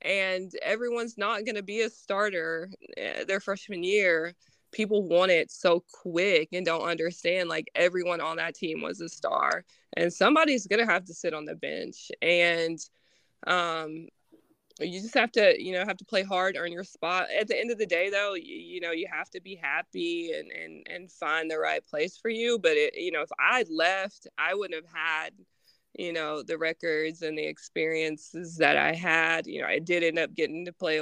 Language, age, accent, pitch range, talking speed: English, 20-39, American, 165-240 Hz, 210 wpm